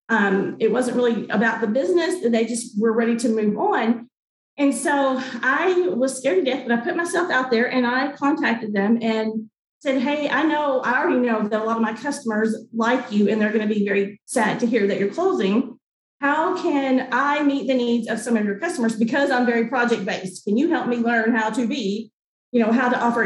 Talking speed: 225 wpm